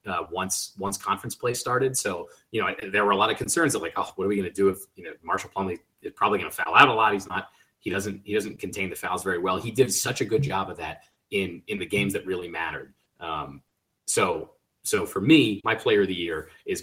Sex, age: male, 30-49